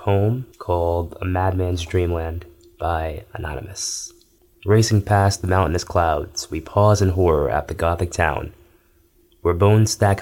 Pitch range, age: 85-100 Hz, 20-39